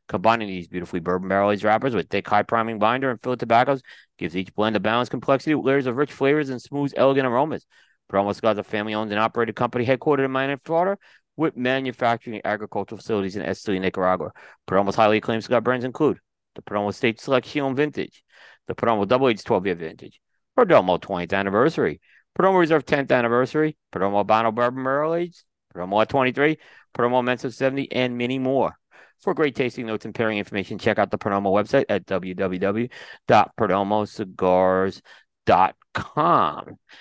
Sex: male